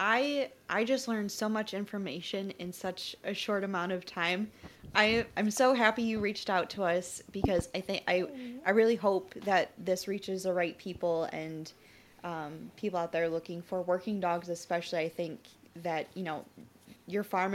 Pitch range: 170-200 Hz